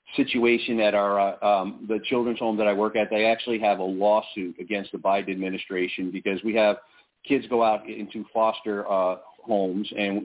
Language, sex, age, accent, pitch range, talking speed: English, male, 40-59, American, 100-115 Hz, 185 wpm